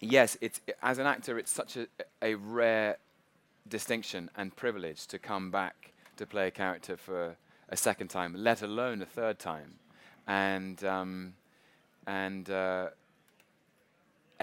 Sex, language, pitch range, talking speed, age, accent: male, English, 85-100 Hz, 135 wpm, 20-39, British